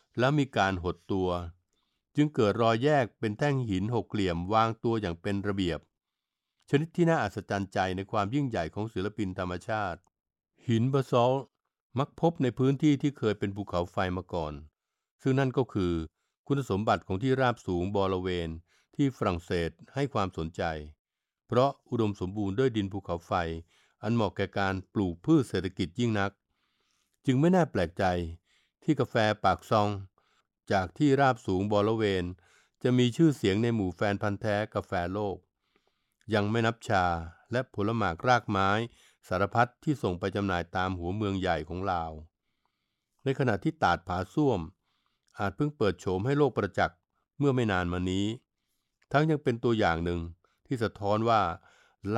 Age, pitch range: 60-79, 95-125 Hz